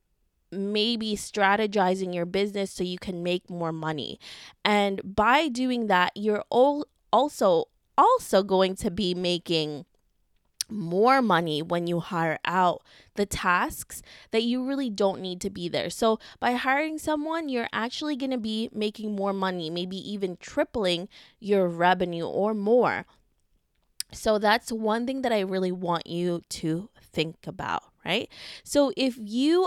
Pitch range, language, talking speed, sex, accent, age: 185-240 Hz, English, 145 wpm, female, American, 20-39